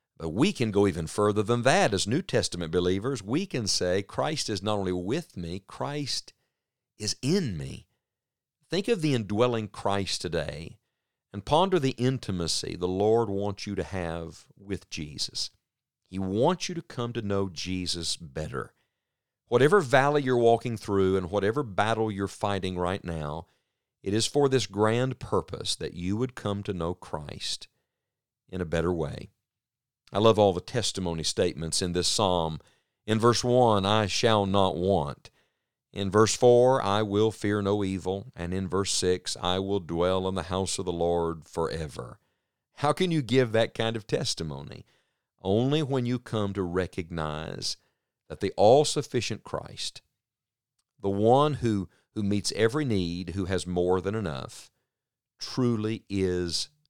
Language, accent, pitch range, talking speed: English, American, 95-125 Hz, 160 wpm